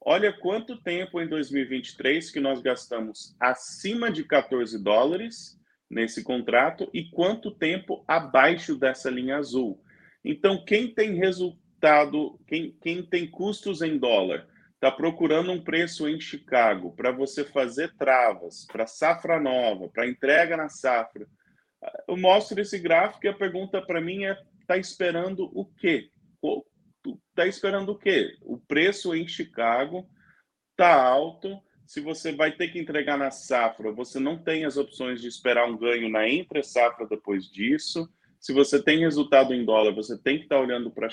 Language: Portuguese